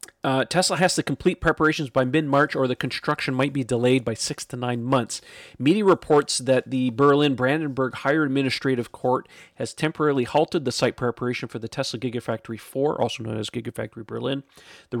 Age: 40-59